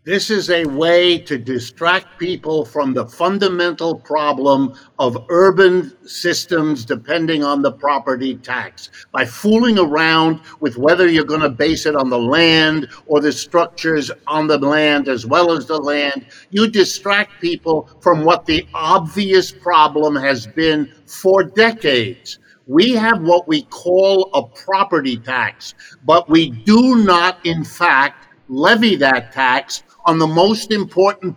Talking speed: 145 wpm